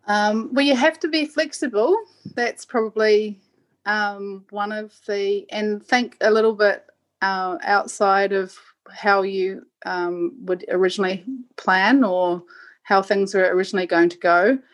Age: 30-49